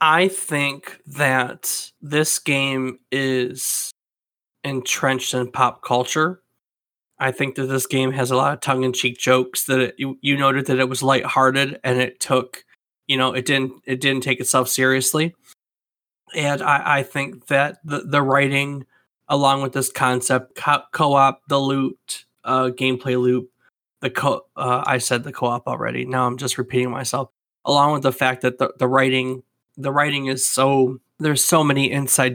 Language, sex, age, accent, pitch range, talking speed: English, male, 20-39, American, 130-140 Hz, 165 wpm